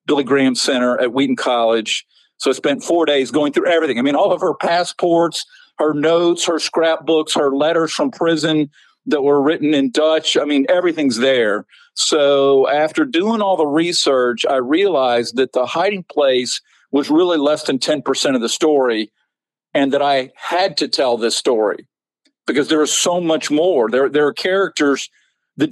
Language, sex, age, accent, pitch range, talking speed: English, male, 50-69, American, 140-195 Hz, 175 wpm